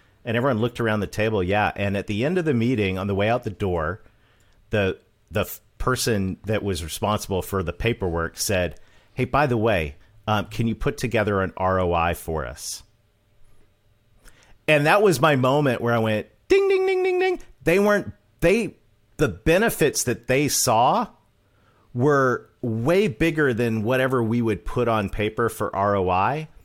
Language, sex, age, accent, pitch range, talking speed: English, male, 40-59, American, 95-125 Hz, 175 wpm